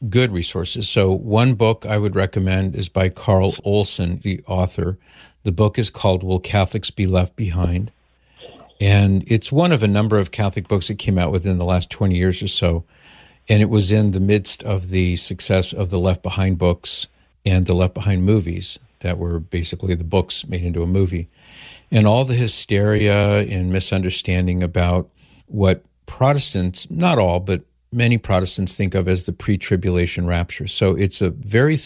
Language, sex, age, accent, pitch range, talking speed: English, male, 50-69, American, 90-105 Hz, 175 wpm